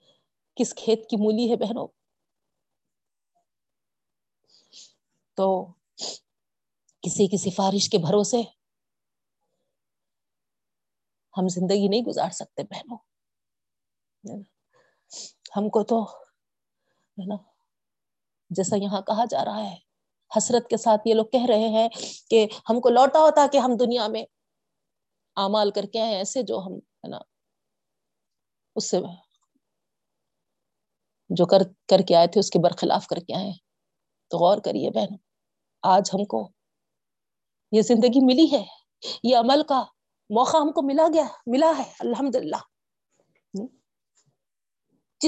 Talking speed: 120 wpm